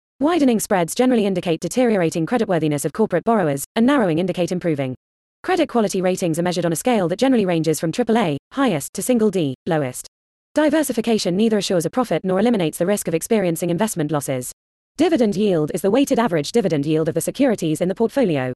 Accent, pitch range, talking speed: British, 165-235 Hz, 190 wpm